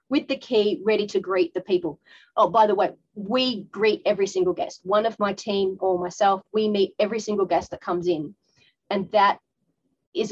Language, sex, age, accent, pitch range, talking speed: English, female, 30-49, Australian, 190-235 Hz, 200 wpm